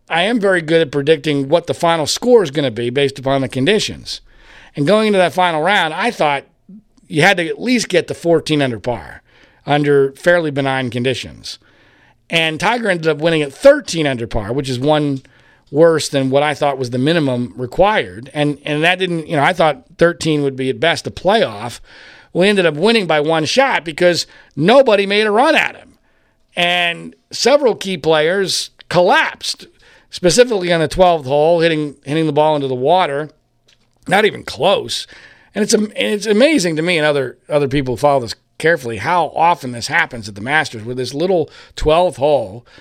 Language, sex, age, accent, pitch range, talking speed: English, male, 40-59, American, 135-170 Hz, 190 wpm